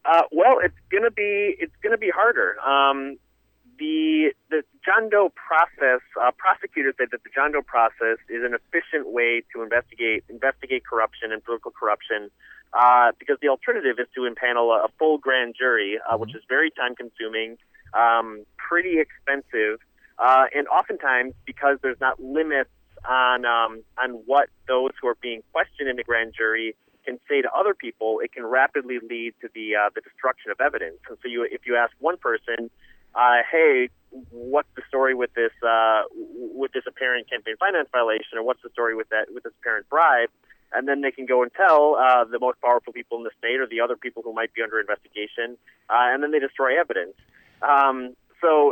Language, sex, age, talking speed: English, male, 30-49, 190 wpm